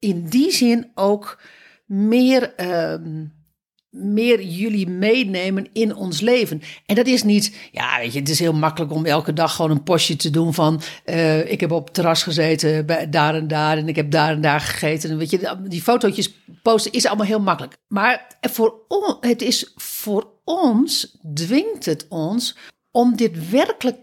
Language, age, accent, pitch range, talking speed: Dutch, 60-79, Dutch, 160-225 Hz, 185 wpm